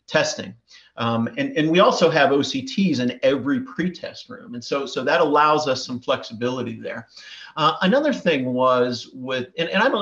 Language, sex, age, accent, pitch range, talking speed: English, male, 40-59, American, 125-160 Hz, 180 wpm